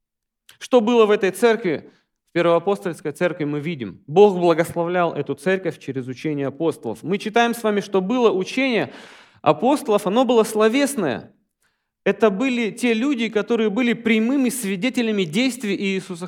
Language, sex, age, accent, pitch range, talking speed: Russian, male, 40-59, native, 180-245 Hz, 140 wpm